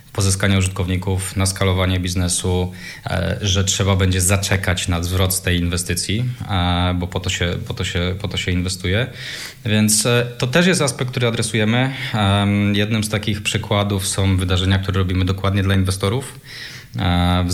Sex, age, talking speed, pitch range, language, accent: male, 20-39, 135 wpm, 90-110 Hz, Polish, native